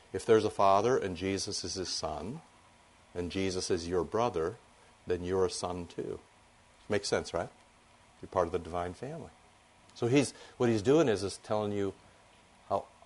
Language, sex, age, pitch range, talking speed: English, male, 50-69, 90-125 Hz, 175 wpm